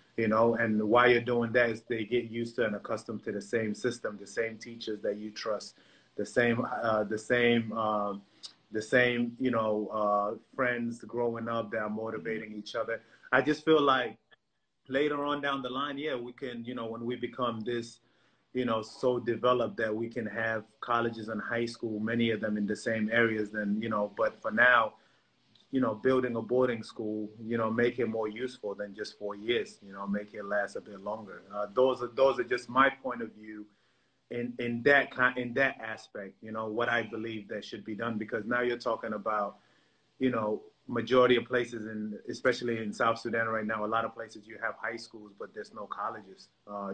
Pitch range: 110-120 Hz